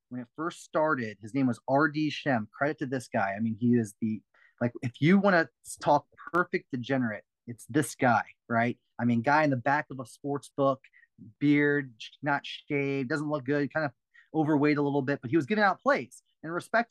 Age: 30-49